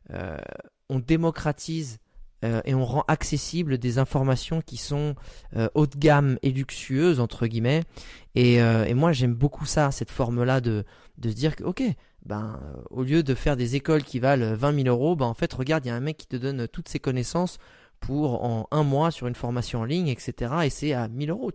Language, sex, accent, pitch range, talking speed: French, male, French, 125-150 Hz, 215 wpm